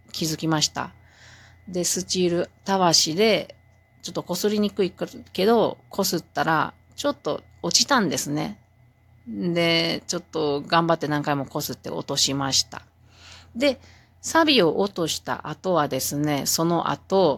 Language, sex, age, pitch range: Japanese, female, 40-59, 130-195 Hz